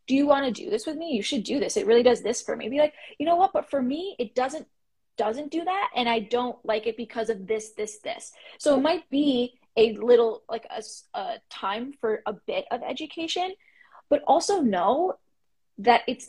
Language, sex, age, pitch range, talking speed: English, female, 20-39, 215-280 Hz, 225 wpm